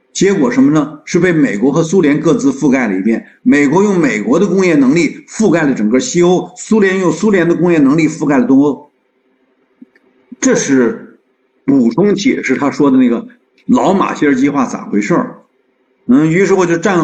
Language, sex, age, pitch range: Chinese, male, 50-69, 155-250 Hz